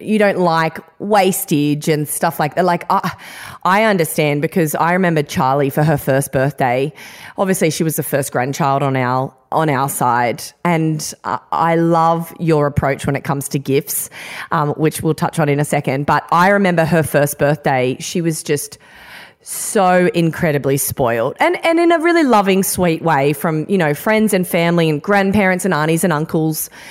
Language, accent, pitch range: English, Australian, 150-190 Hz